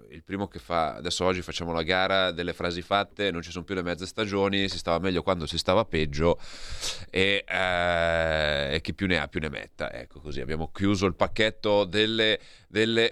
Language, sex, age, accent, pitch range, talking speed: Italian, male, 30-49, native, 95-120 Hz, 190 wpm